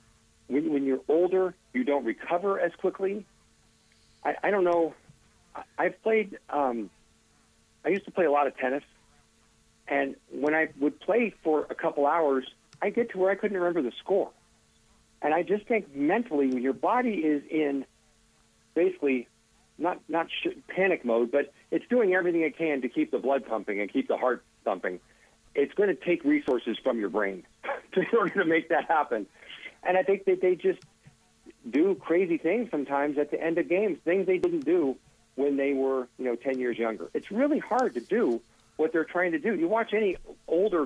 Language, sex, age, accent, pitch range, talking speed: English, male, 50-69, American, 135-195 Hz, 190 wpm